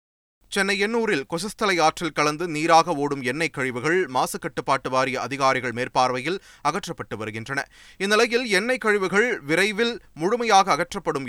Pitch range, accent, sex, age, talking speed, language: 130-170 Hz, native, male, 30-49, 110 wpm, Tamil